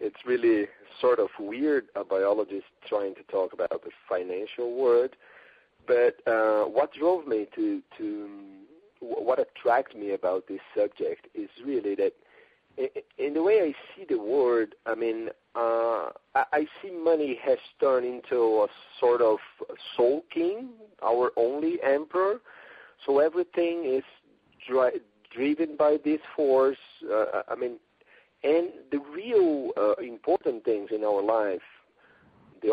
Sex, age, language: male, 40-59, Turkish